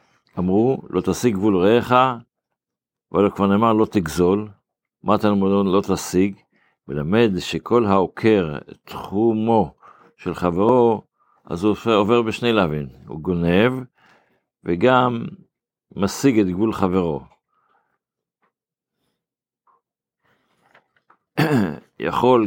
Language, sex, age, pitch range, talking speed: Hebrew, male, 50-69, 90-115 Hz, 90 wpm